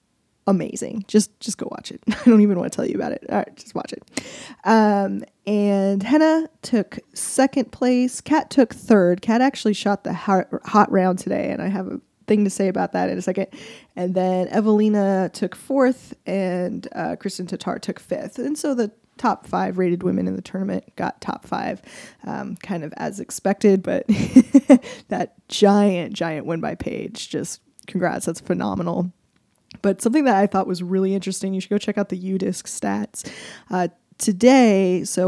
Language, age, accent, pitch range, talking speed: English, 20-39, American, 185-230 Hz, 185 wpm